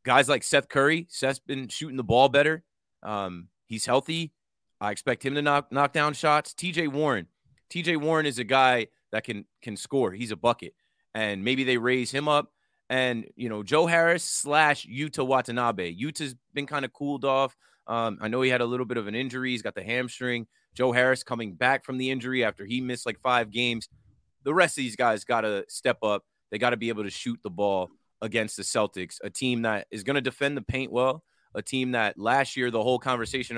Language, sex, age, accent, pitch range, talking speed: English, male, 30-49, American, 105-135 Hz, 220 wpm